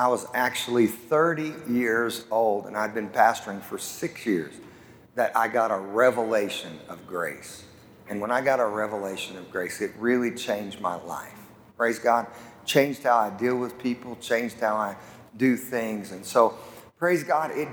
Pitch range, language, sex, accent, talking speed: 115-145 Hz, English, male, American, 175 wpm